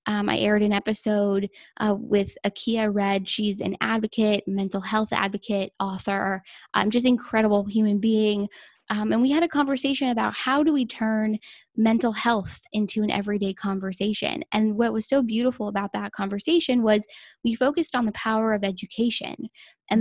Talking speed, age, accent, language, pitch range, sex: 165 wpm, 10-29, American, English, 200-235 Hz, female